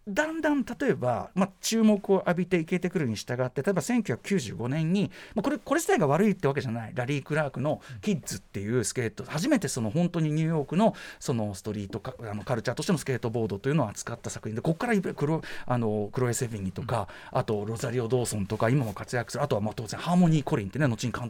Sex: male